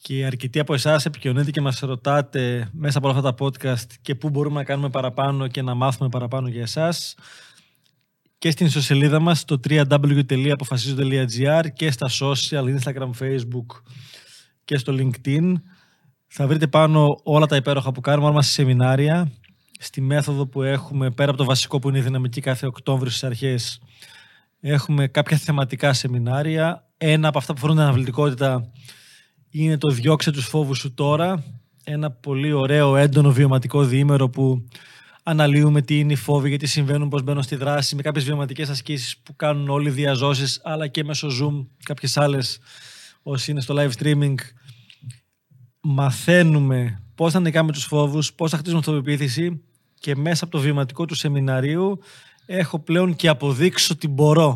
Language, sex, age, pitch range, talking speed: Greek, male, 20-39, 135-150 Hz, 160 wpm